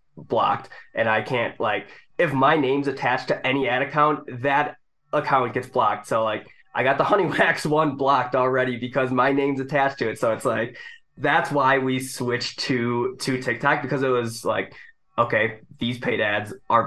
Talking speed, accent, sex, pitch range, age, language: 185 wpm, American, male, 115-135 Hz, 20-39, English